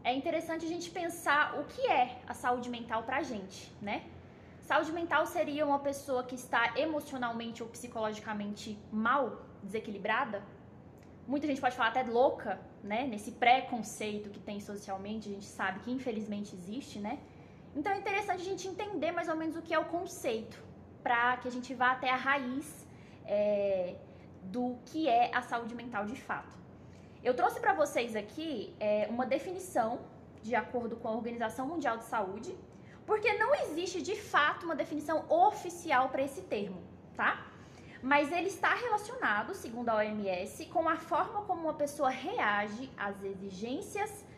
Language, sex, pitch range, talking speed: Portuguese, female, 235-330 Hz, 160 wpm